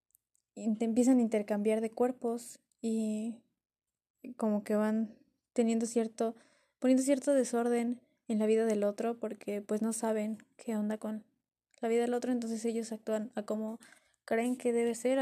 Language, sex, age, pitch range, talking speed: Spanish, female, 10-29, 210-245 Hz, 155 wpm